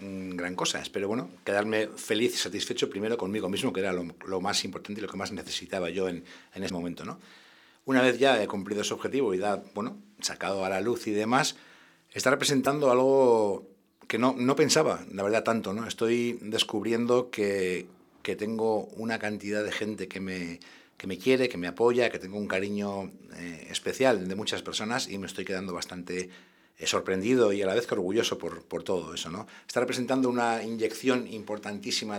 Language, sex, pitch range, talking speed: English, male, 95-120 Hz, 190 wpm